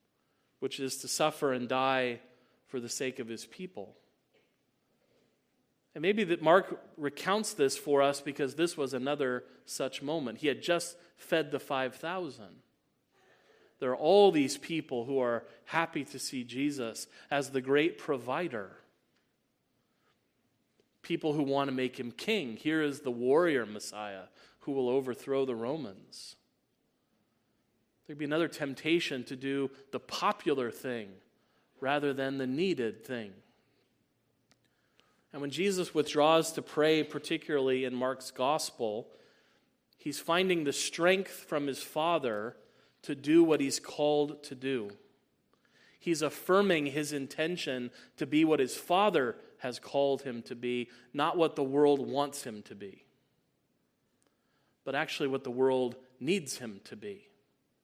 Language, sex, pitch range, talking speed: English, male, 130-155 Hz, 140 wpm